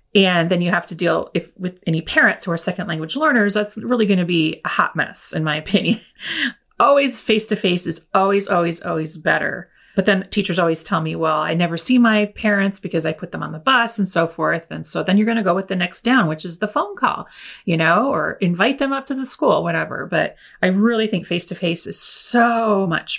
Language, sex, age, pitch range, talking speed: English, female, 30-49, 175-230 Hz, 235 wpm